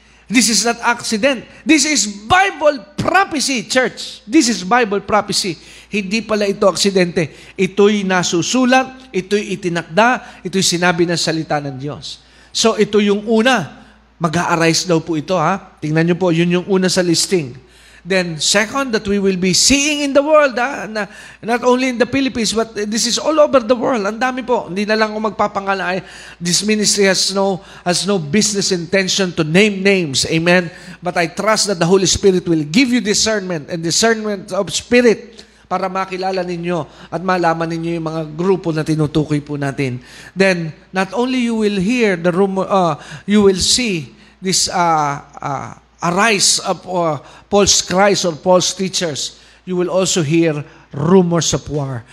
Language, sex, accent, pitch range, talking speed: Filipino, male, native, 175-220 Hz, 165 wpm